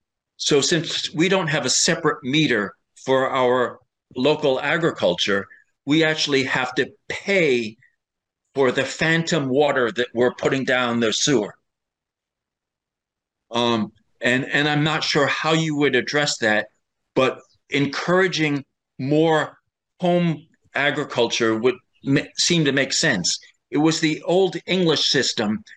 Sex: male